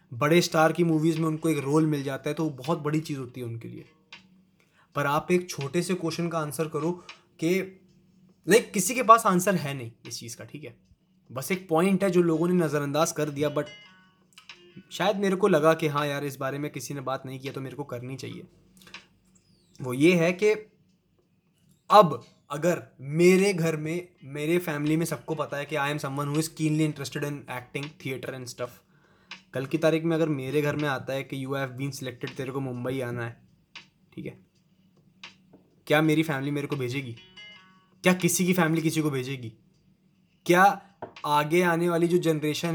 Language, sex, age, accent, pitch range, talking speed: Hindi, male, 20-39, native, 140-175 Hz, 195 wpm